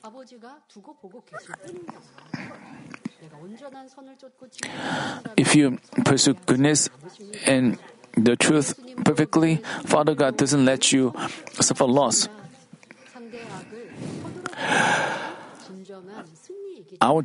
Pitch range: 140-195 Hz